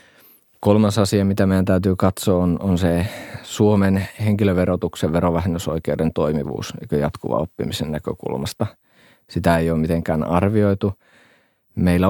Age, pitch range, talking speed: 30-49, 80-100 Hz, 115 wpm